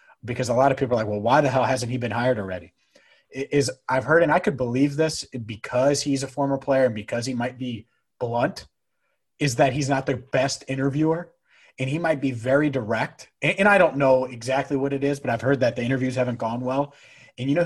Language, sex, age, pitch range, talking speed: English, male, 30-49, 115-140 Hz, 235 wpm